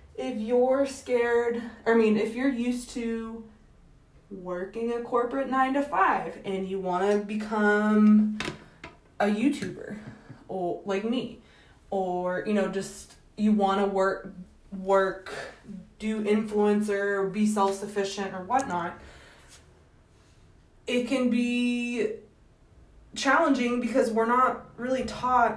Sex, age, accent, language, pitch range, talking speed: female, 20-39, American, English, 195-240 Hz, 115 wpm